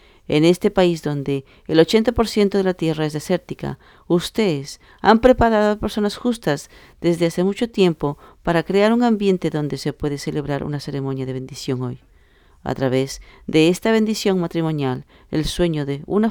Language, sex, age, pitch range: English, female, 40-59, 145-195 Hz